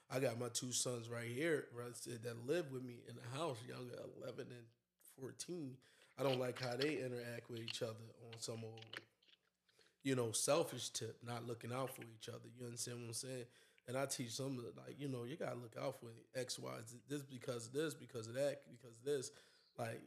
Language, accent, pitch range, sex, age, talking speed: English, American, 115-135 Hz, male, 20-39, 225 wpm